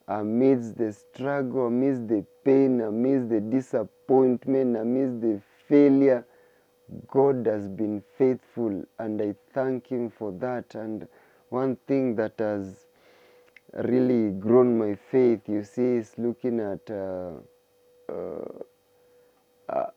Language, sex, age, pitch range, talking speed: English, male, 30-49, 105-135 Hz, 115 wpm